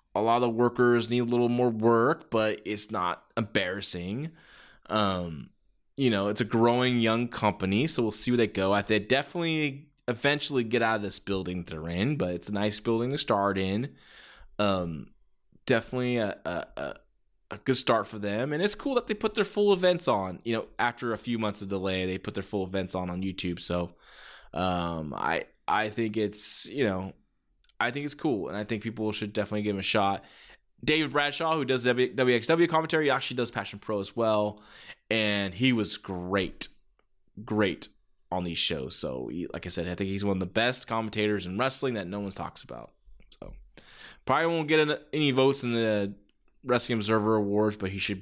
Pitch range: 100-125 Hz